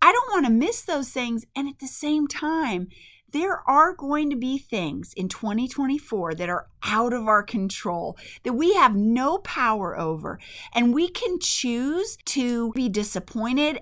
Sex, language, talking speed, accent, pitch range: female, English, 170 wpm, American, 185-255 Hz